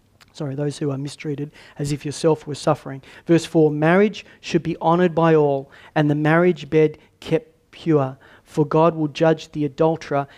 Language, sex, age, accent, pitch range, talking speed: English, male, 40-59, Australian, 150-165 Hz, 175 wpm